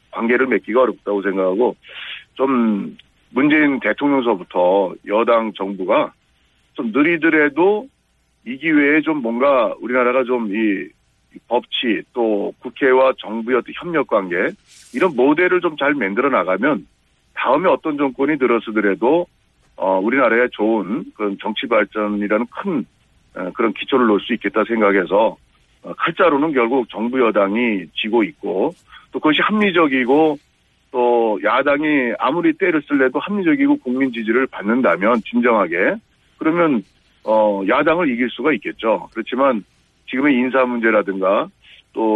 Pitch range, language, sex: 110-155 Hz, Korean, male